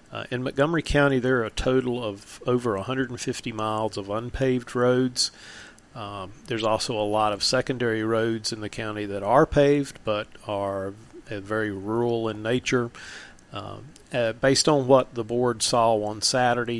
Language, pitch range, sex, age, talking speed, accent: English, 105-125 Hz, male, 40-59, 165 wpm, American